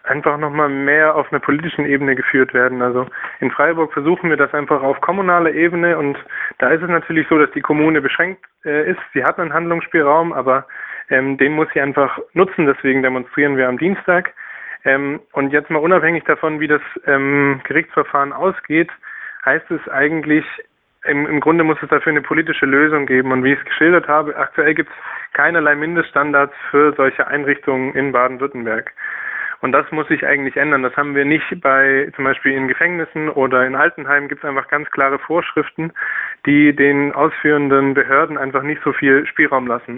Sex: male